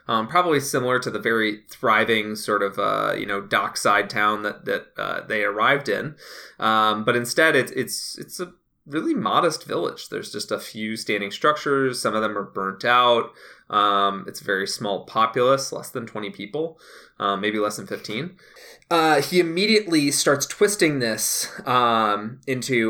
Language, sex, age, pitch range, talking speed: English, male, 20-39, 105-145 Hz, 170 wpm